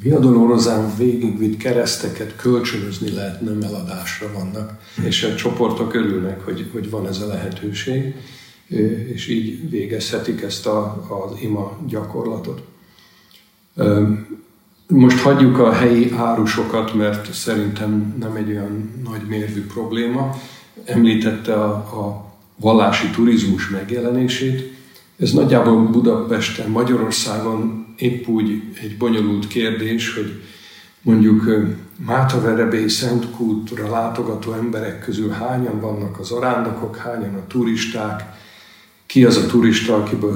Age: 50-69